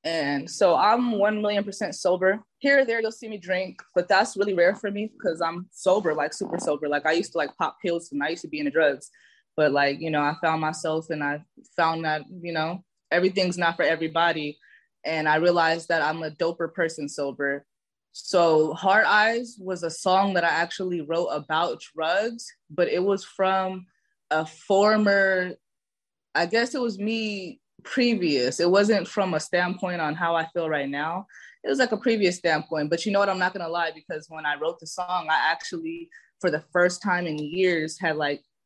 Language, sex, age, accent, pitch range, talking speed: English, female, 20-39, American, 155-200 Hz, 200 wpm